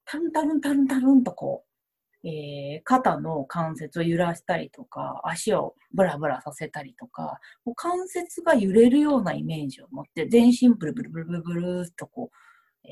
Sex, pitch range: female, 175-275 Hz